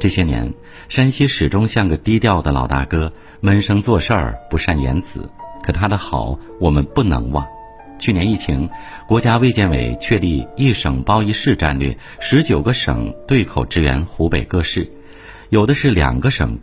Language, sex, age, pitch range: Chinese, male, 50-69, 80-115 Hz